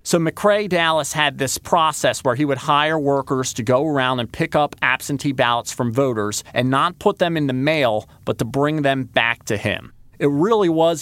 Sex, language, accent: male, English, American